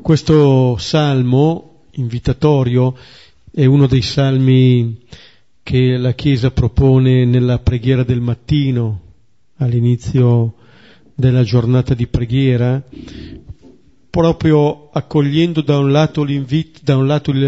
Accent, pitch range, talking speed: native, 125-145 Hz, 90 wpm